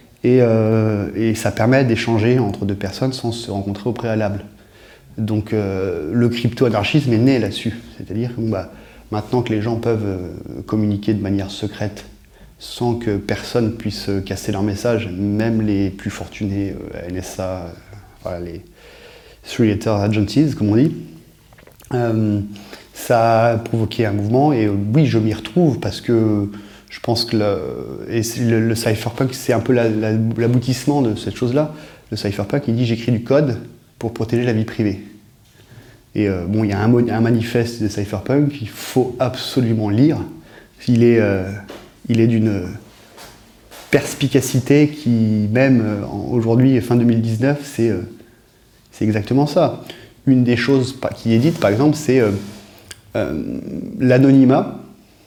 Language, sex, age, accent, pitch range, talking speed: French, male, 30-49, French, 105-120 Hz, 140 wpm